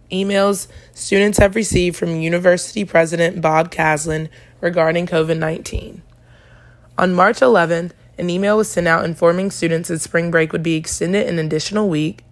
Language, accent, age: English, American, 20-39